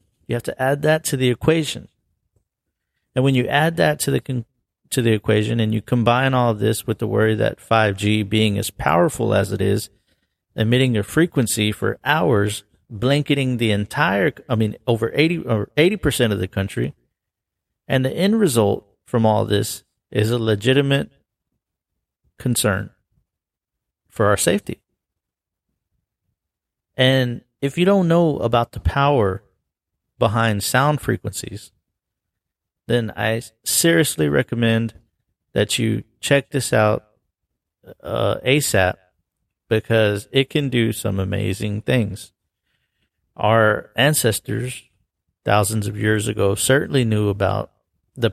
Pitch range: 105-130 Hz